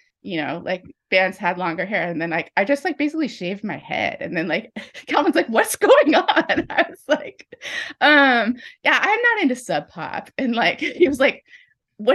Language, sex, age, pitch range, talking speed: English, female, 20-39, 180-295 Hz, 200 wpm